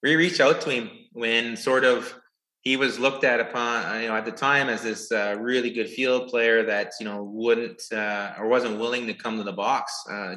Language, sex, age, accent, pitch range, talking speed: English, male, 20-39, American, 100-120 Hz, 225 wpm